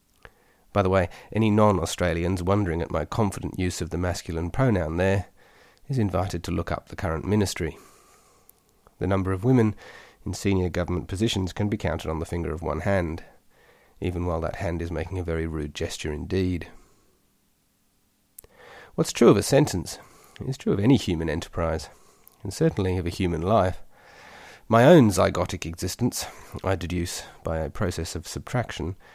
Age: 40-59